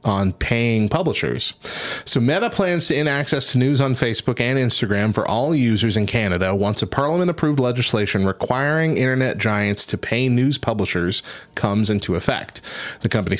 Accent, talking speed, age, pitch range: American, 160 wpm, 30-49, 100-130 Hz